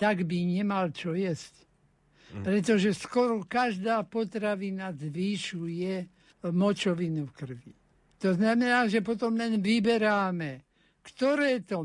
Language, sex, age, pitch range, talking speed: Slovak, male, 60-79, 175-215 Hz, 105 wpm